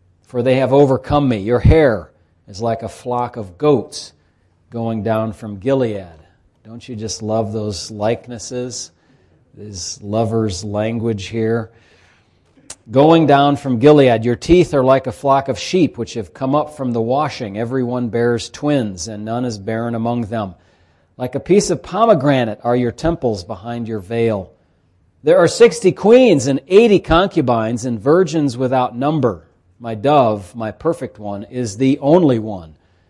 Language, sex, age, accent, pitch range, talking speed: English, male, 40-59, American, 105-135 Hz, 155 wpm